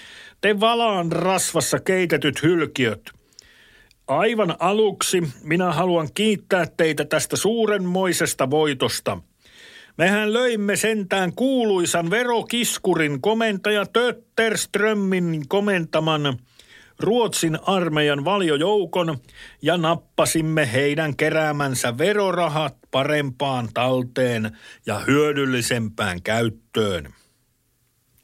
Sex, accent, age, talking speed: male, native, 60-79, 75 wpm